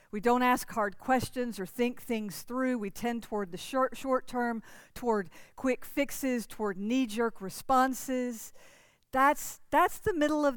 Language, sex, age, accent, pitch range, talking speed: English, female, 50-69, American, 220-275 Hz, 160 wpm